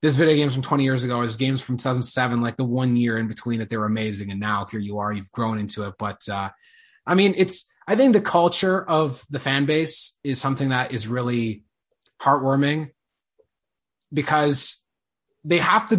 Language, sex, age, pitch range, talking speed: English, male, 20-39, 120-165 Hz, 205 wpm